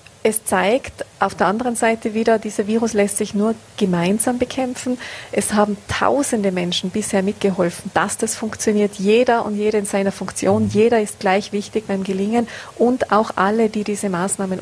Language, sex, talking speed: German, female, 170 wpm